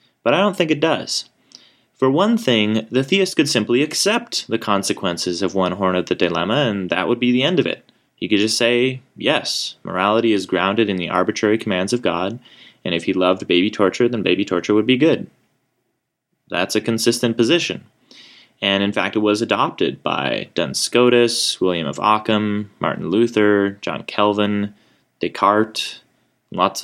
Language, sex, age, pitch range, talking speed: English, male, 30-49, 95-120 Hz, 175 wpm